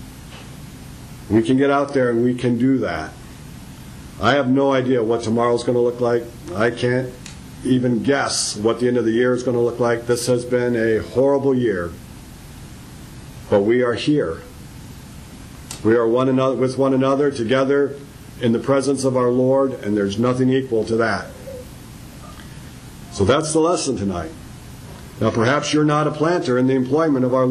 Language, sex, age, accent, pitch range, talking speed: English, male, 50-69, American, 115-140 Hz, 180 wpm